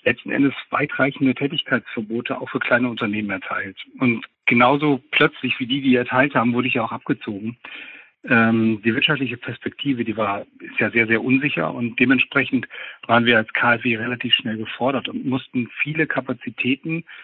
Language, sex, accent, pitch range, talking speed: German, male, German, 115-135 Hz, 165 wpm